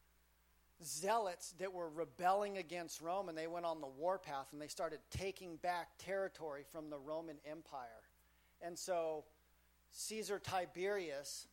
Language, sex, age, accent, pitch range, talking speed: English, male, 40-59, American, 145-175 Hz, 140 wpm